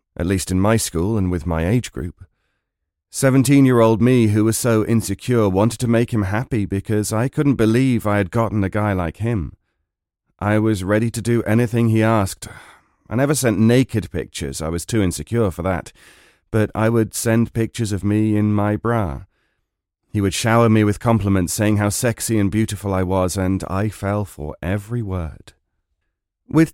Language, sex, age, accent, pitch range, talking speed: English, male, 40-59, British, 95-115 Hz, 180 wpm